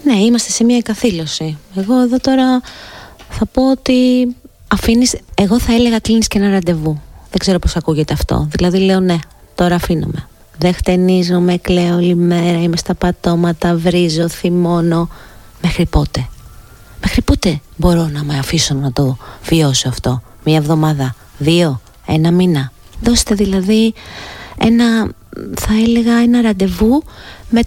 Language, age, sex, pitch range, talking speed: Greek, 30-49, female, 155-220 Hz, 140 wpm